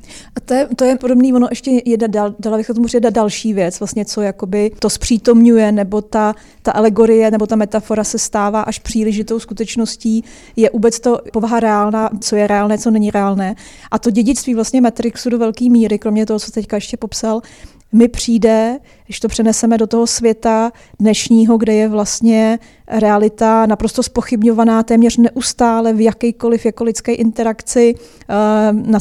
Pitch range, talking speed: 220-240 Hz, 165 wpm